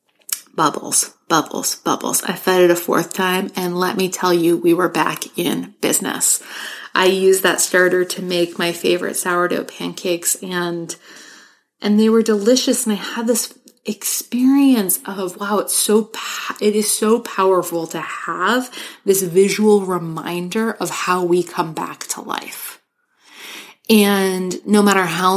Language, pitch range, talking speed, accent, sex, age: English, 175-195 Hz, 150 wpm, American, female, 20-39